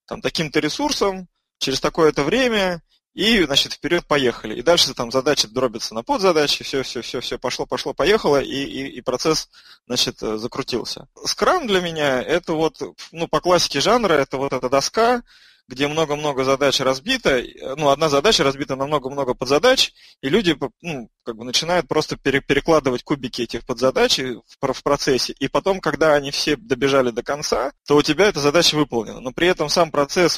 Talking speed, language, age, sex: 165 wpm, Russian, 20-39, male